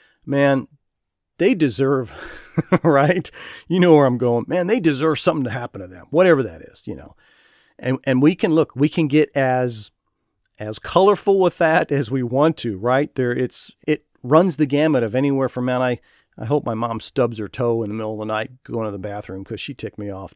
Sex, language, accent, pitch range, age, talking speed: male, English, American, 110-155 Hz, 40-59, 215 wpm